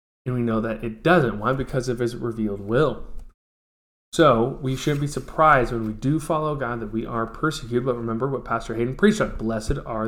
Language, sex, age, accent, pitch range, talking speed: English, male, 20-39, American, 120-155 Hz, 210 wpm